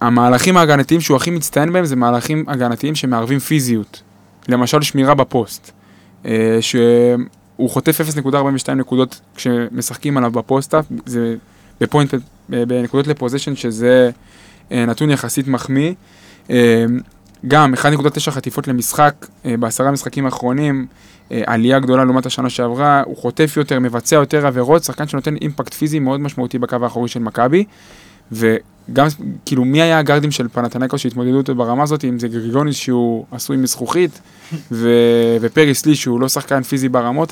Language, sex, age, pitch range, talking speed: Hebrew, male, 20-39, 120-145 Hz, 130 wpm